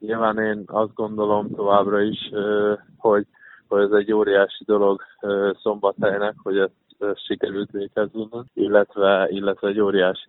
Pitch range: 100-110 Hz